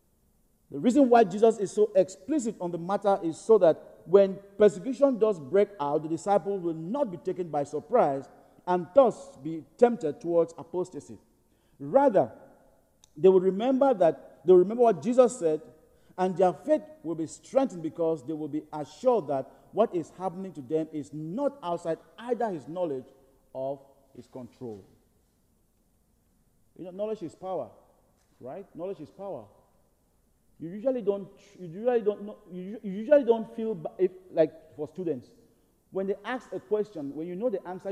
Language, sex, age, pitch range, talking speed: English, male, 50-69, 165-235 Hz, 165 wpm